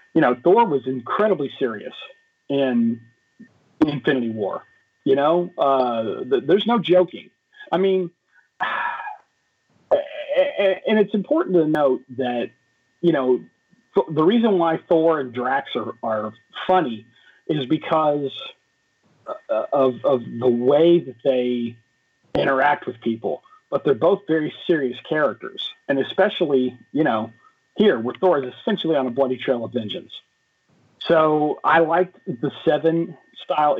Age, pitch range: 40-59, 130-180 Hz